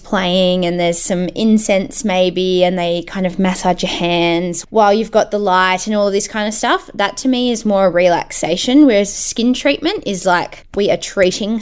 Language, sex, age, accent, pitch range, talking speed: English, female, 10-29, Australian, 175-220 Hz, 195 wpm